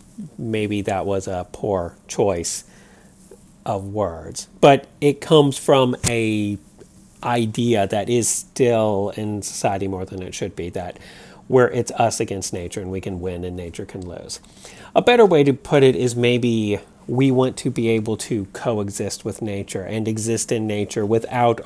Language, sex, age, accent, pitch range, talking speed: English, male, 40-59, American, 95-120 Hz, 165 wpm